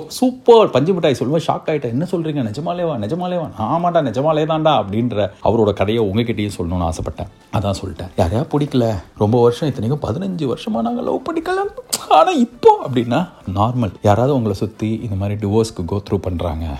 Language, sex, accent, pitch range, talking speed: Tamil, male, native, 95-130 Hz, 105 wpm